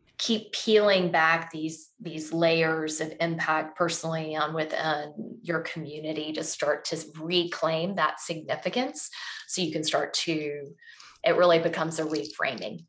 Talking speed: 135 wpm